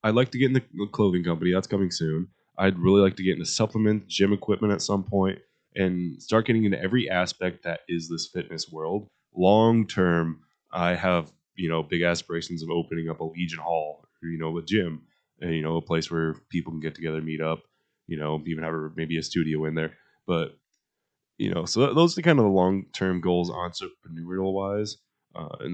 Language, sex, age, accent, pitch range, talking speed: English, male, 20-39, American, 80-100 Hz, 210 wpm